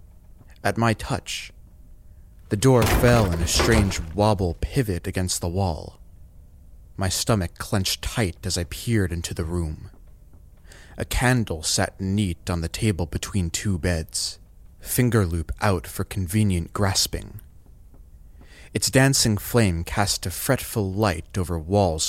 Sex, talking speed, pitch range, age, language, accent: male, 135 wpm, 85-105 Hz, 30-49, English, American